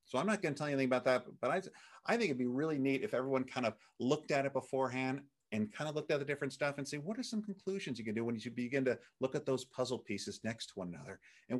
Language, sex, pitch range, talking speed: English, male, 105-135 Hz, 295 wpm